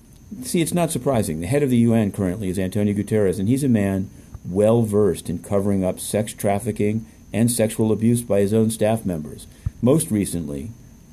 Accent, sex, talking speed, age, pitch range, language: American, male, 180 wpm, 50-69, 95-115 Hz, English